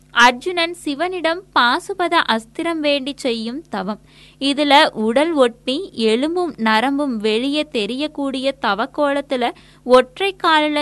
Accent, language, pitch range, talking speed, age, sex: native, Tamil, 240-310 Hz, 80 wpm, 20-39, female